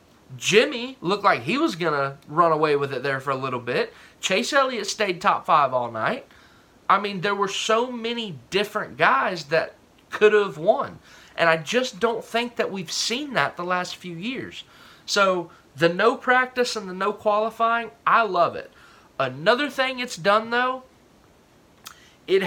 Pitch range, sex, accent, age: 150-225 Hz, male, American, 30-49